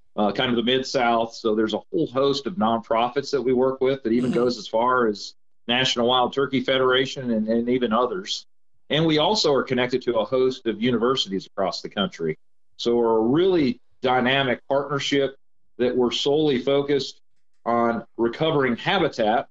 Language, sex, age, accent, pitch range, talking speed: English, male, 40-59, American, 115-140 Hz, 170 wpm